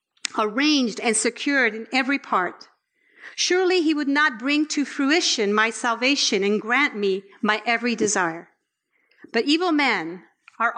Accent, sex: American, female